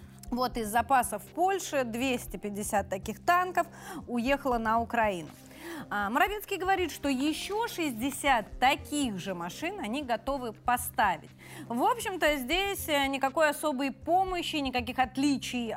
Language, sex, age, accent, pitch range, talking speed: Russian, female, 20-39, native, 225-310 Hz, 110 wpm